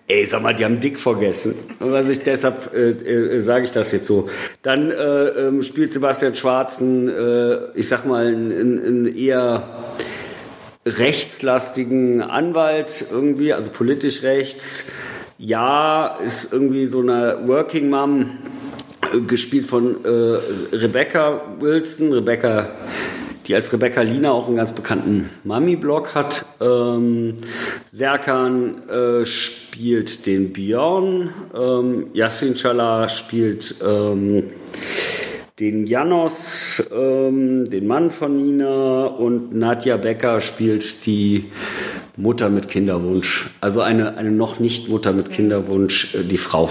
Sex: male